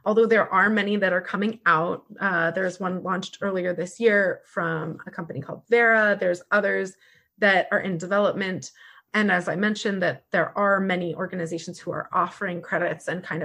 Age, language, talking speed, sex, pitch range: 20-39, English, 185 wpm, female, 175-210 Hz